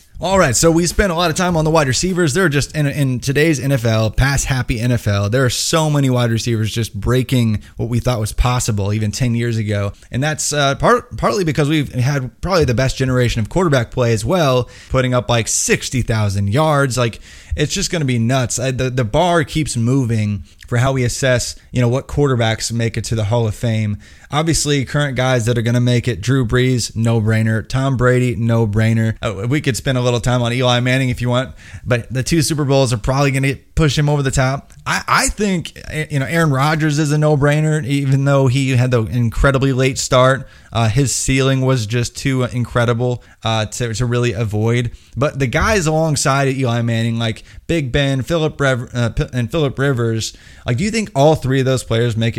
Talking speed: 210 wpm